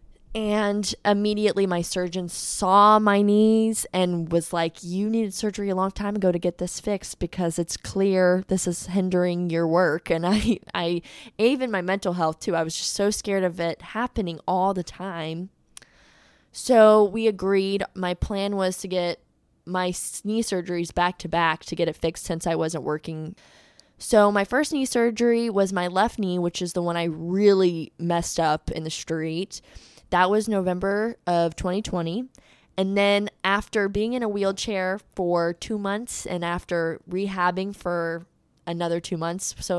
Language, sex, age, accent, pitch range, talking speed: English, female, 20-39, American, 175-205 Hz, 170 wpm